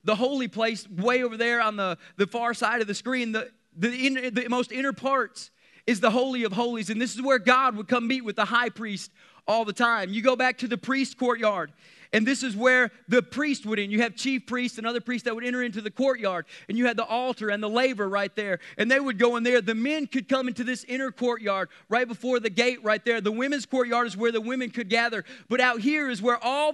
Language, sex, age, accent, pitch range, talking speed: English, male, 30-49, American, 225-260 Hz, 255 wpm